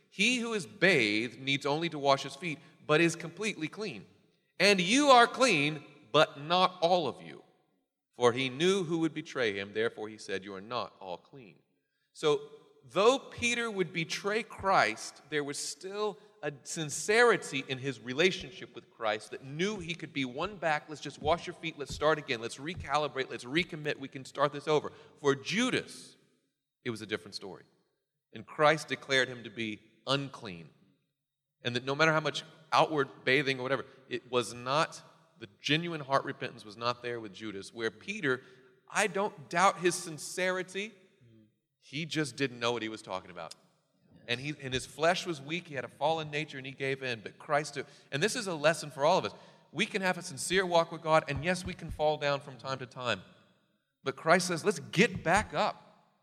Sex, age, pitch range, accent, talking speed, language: male, 40-59, 135-175 Hz, American, 195 wpm, English